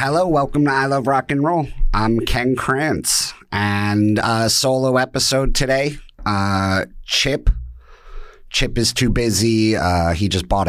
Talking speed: 145 wpm